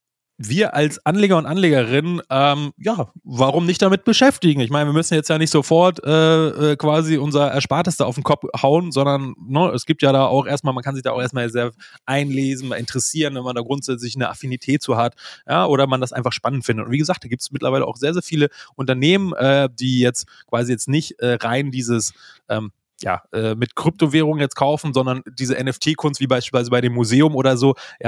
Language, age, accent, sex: German, 20-39, German, male